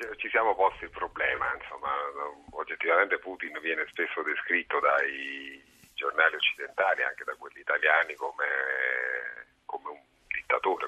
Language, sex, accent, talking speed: Italian, male, native, 120 wpm